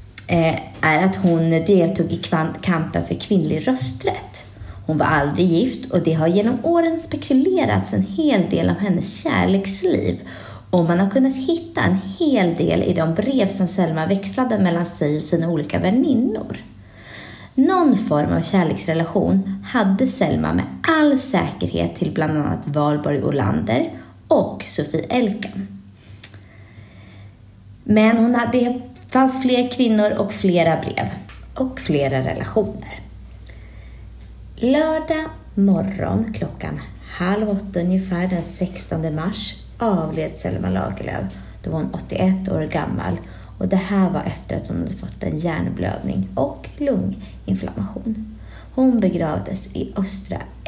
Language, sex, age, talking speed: Swedish, female, 20-39, 130 wpm